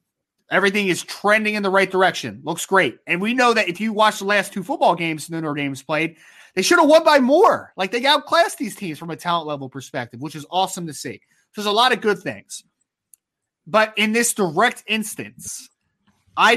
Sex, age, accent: male, 20-39, American